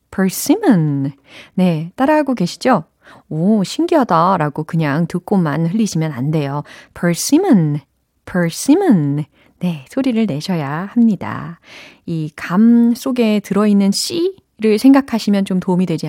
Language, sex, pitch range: Korean, female, 155-250 Hz